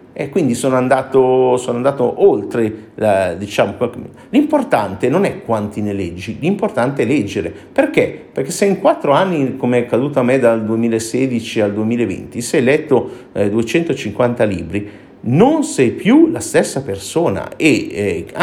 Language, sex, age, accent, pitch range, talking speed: Italian, male, 50-69, native, 105-140 Hz, 155 wpm